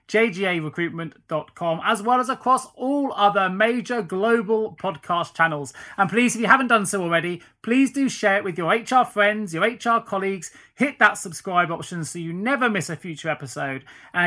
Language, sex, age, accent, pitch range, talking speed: English, male, 30-49, British, 165-230 Hz, 175 wpm